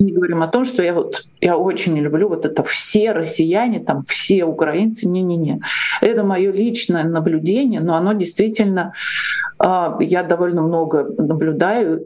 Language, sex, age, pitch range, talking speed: Russian, male, 50-69, 160-200 Hz, 150 wpm